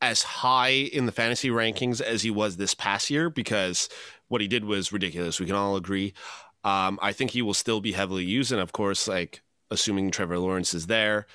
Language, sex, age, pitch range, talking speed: English, male, 30-49, 95-115 Hz, 210 wpm